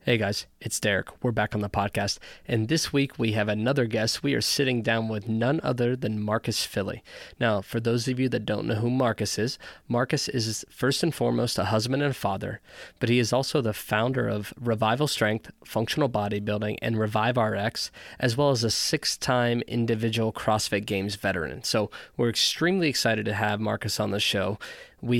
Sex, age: male, 20-39